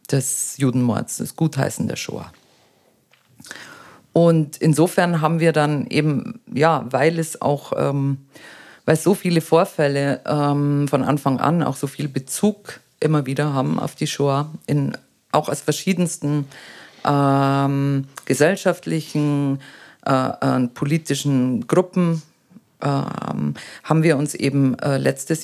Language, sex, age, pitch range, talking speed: German, female, 50-69, 130-155 Hz, 125 wpm